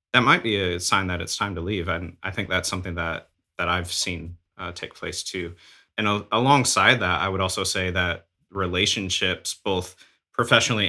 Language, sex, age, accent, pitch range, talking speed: English, male, 30-49, American, 90-110 Hz, 195 wpm